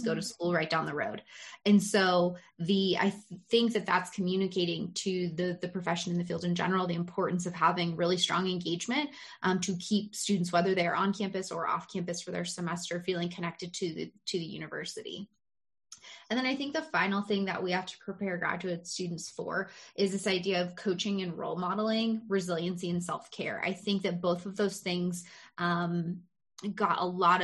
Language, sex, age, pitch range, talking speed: English, female, 20-39, 175-200 Hz, 195 wpm